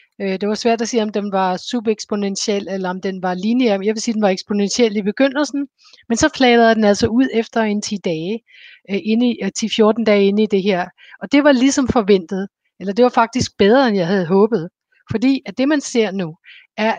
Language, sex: Danish, female